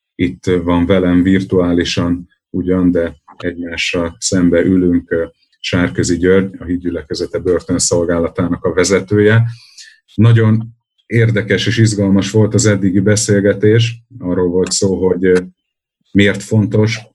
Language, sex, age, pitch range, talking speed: Hungarian, male, 30-49, 90-110 Hz, 105 wpm